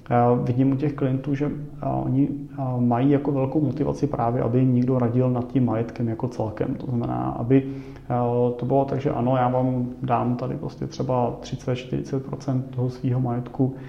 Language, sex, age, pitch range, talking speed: Czech, male, 30-49, 115-130 Hz, 180 wpm